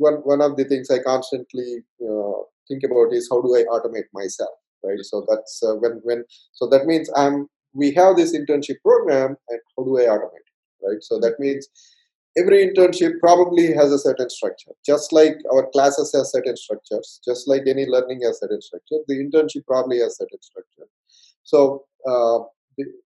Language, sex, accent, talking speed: English, male, Indian, 175 wpm